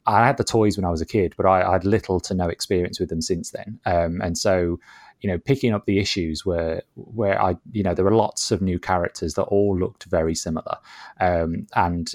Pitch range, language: 90-115 Hz, English